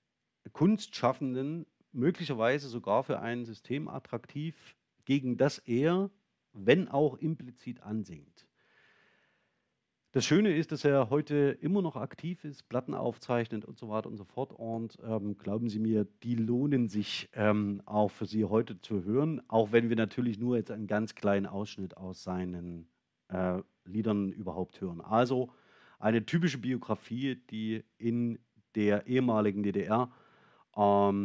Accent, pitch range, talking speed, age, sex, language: German, 105-135 Hz, 140 wpm, 40-59, male, German